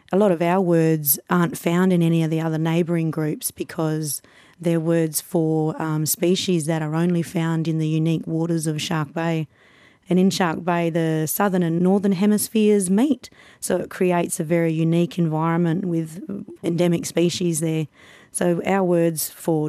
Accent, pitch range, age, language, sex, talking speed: Australian, 160-185 Hz, 30-49, English, female, 170 wpm